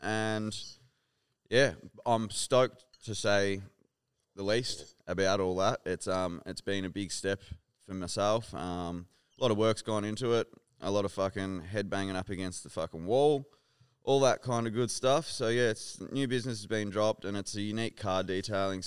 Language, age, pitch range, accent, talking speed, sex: English, 20-39, 90-110 Hz, Australian, 190 wpm, male